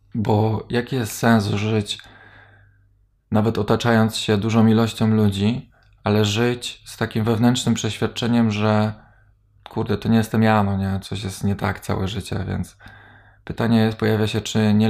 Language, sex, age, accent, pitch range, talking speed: Polish, male, 20-39, native, 105-115 Hz, 140 wpm